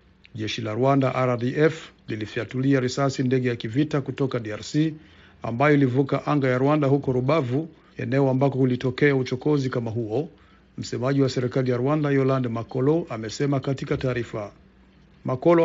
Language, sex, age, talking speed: Swahili, male, 50-69, 135 wpm